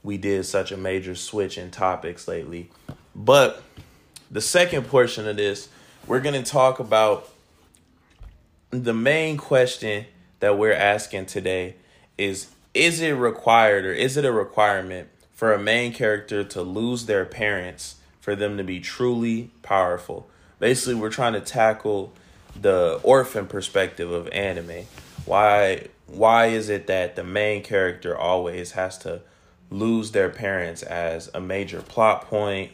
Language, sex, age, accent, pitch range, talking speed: English, male, 20-39, American, 90-115 Hz, 145 wpm